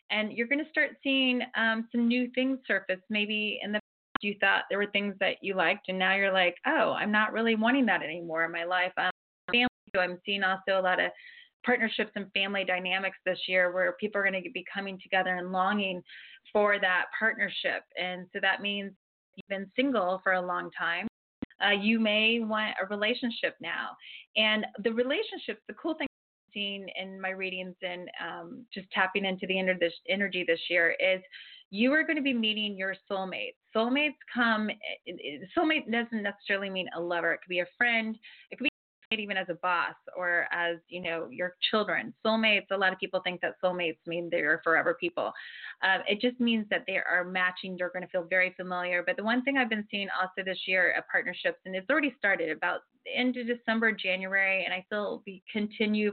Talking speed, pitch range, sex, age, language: 200 wpm, 185-225 Hz, female, 20-39, English